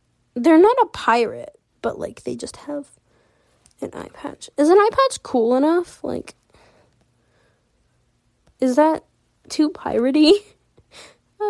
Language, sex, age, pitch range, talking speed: English, female, 10-29, 205-305 Hz, 125 wpm